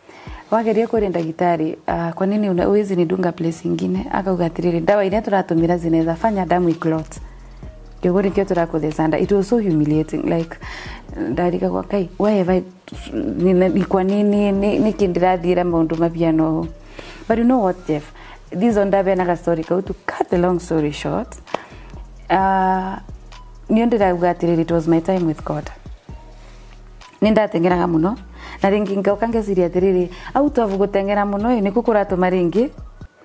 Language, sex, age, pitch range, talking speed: Swahili, female, 30-49, 165-200 Hz, 135 wpm